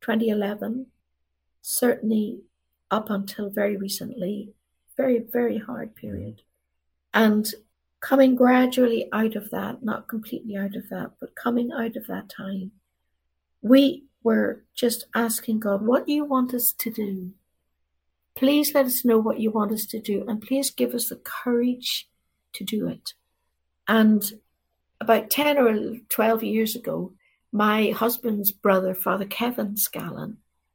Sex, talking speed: female, 140 wpm